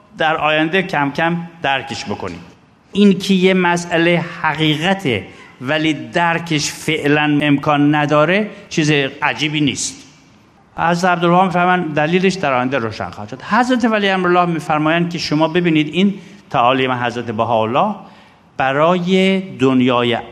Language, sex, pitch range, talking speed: Persian, male, 135-180 Hz, 125 wpm